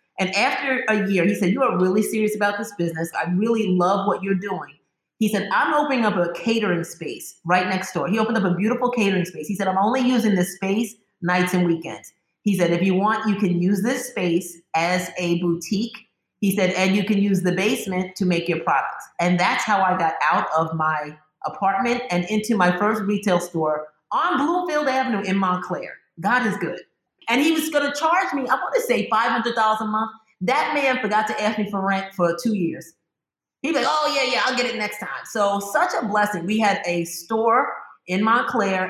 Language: English